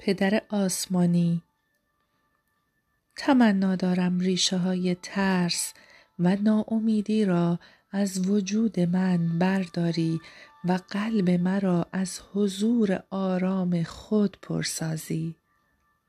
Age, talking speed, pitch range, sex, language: 40-59, 80 wpm, 170-200 Hz, female, Persian